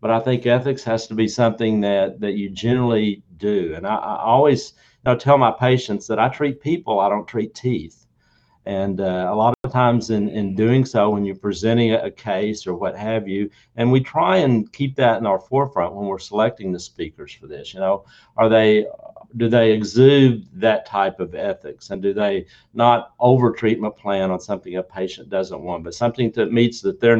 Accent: American